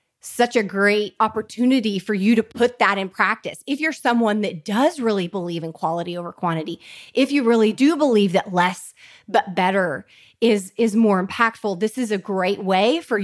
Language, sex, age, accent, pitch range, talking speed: English, female, 30-49, American, 195-245 Hz, 185 wpm